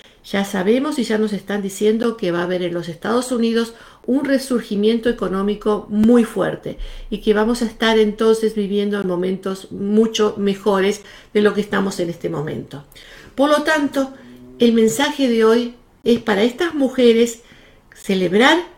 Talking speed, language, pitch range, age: 160 wpm, Spanish, 210-260 Hz, 50-69